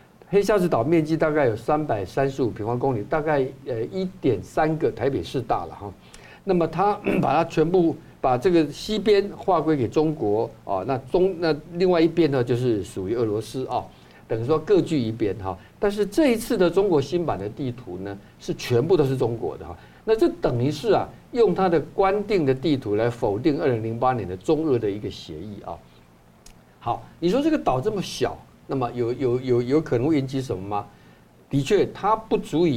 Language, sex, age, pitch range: Chinese, male, 50-69, 125-180 Hz